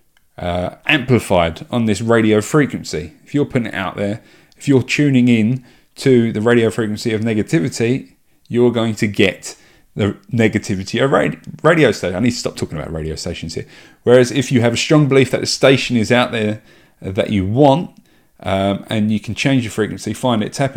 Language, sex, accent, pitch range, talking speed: English, male, British, 95-125 Hz, 190 wpm